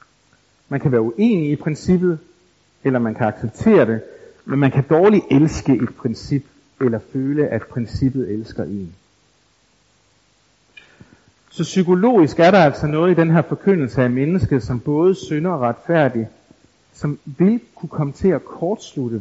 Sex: male